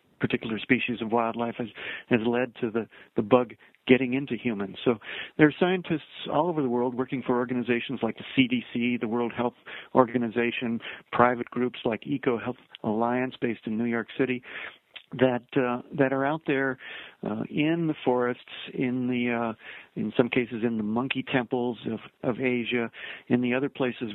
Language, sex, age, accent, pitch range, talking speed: English, male, 50-69, American, 115-130 Hz, 175 wpm